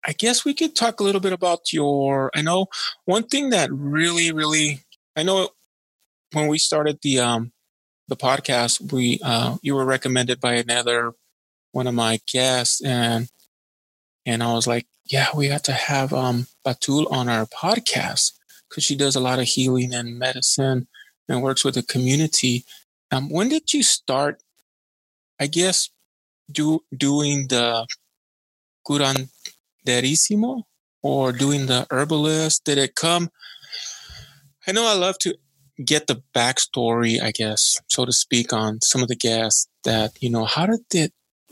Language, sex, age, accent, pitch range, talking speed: English, male, 20-39, American, 120-150 Hz, 155 wpm